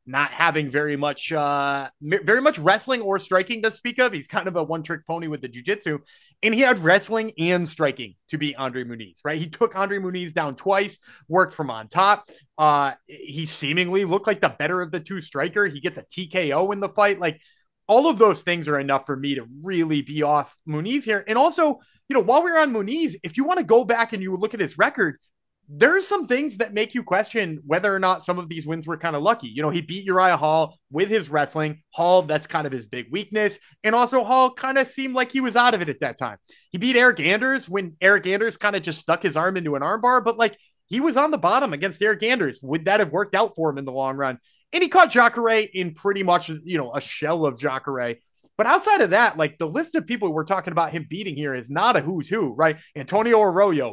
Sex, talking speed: male, 250 wpm